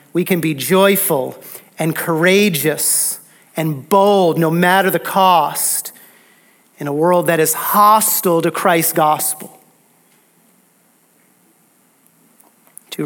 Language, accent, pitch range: English, American, 155-195 Hz